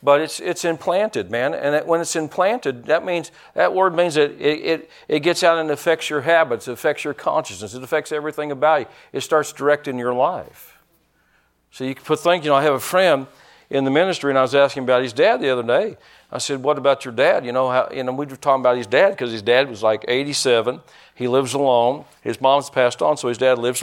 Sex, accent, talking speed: male, American, 240 wpm